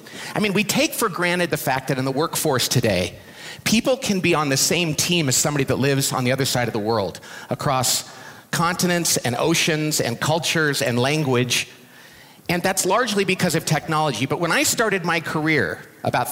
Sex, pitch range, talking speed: male, 135-190 Hz, 190 wpm